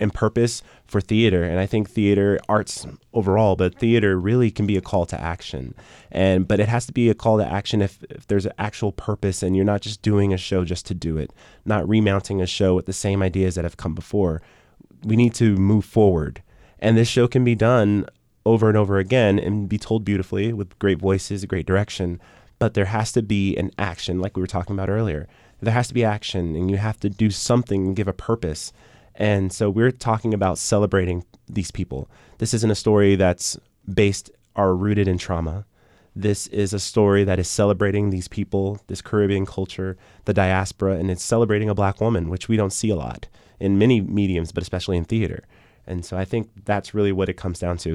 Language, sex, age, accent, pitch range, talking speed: English, male, 20-39, American, 95-110 Hz, 215 wpm